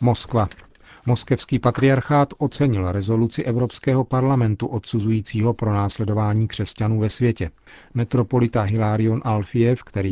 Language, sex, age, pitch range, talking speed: Czech, male, 40-59, 105-120 Hz, 100 wpm